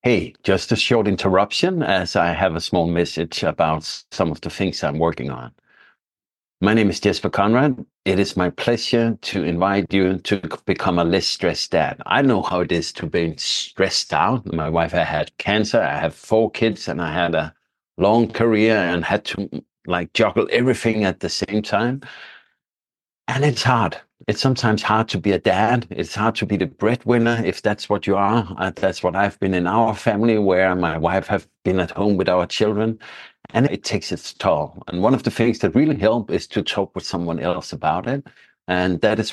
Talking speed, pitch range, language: 205 wpm, 90-115 Hz, English